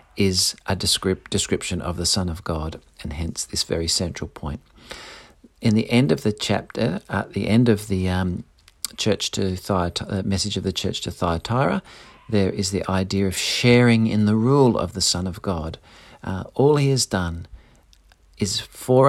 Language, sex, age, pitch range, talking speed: English, male, 50-69, 95-120 Hz, 180 wpm